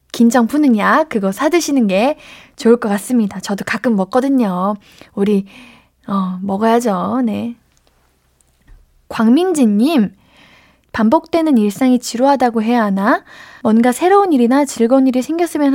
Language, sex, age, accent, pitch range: Korean, female, 20-39, native, 205-280 Hz